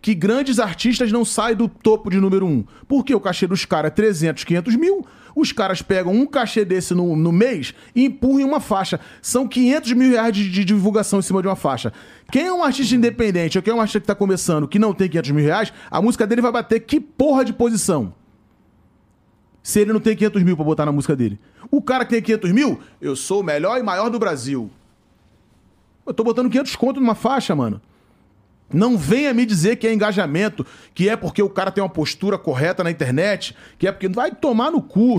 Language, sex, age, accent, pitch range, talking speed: Portuguese, male, 30-49, Brazilian, 175-230 Hz, 225 wpm